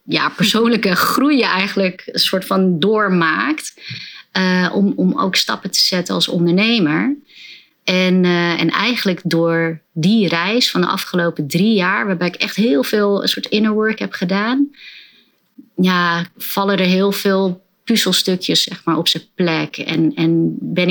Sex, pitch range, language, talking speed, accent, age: female, 170-205 Hz, Dutch, 160 wpm, Dutch, 30-49